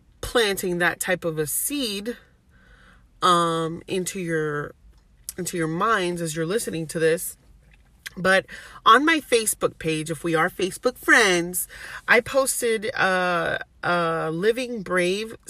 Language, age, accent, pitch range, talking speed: English, 30-49, American, 170-225 Hz, 130 wpm